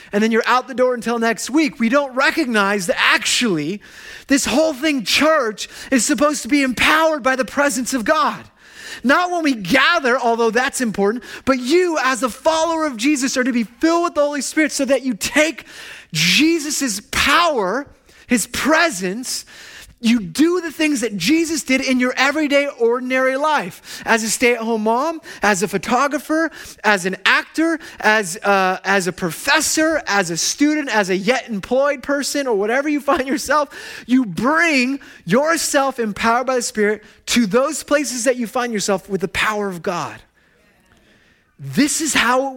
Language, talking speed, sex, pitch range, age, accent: English, 170 wpm, male, 225-295 Hz, 30-49, American